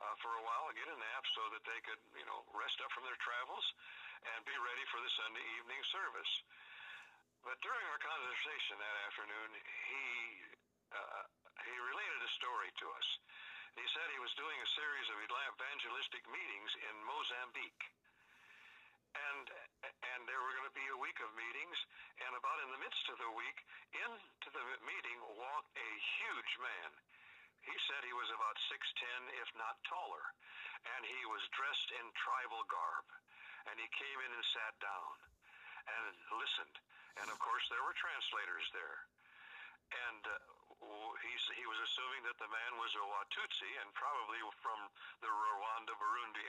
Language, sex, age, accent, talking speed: English, male, 60-79, American, 165 wpm